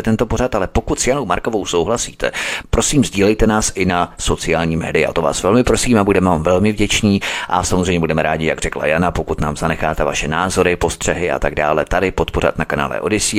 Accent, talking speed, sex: native, 205 wpm, male